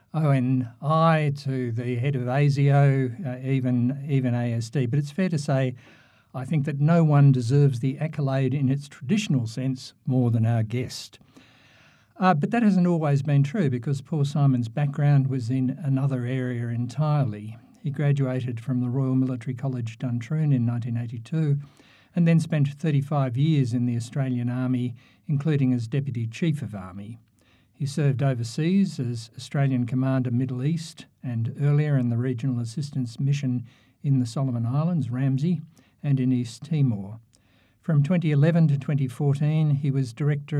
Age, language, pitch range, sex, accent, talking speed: 60-79, English, 125-145 Hz, male, Australian, 150 wpm